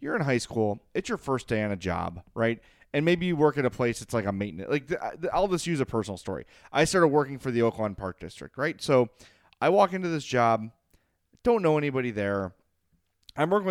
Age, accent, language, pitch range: 30-49, American, English, 110-160 Hz